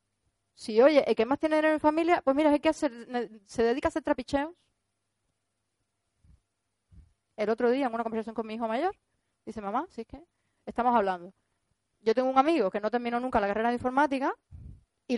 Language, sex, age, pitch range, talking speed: Spanish, female, 30-49, 205-285 Hz, 180 wpm